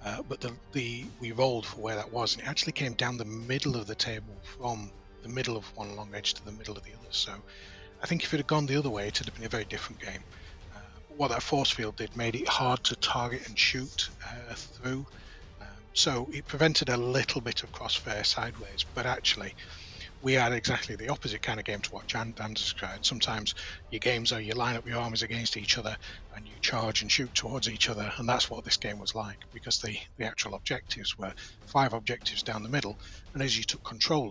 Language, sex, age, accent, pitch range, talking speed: English, male, 30-49, British, 100-120 Hz, 235 wpm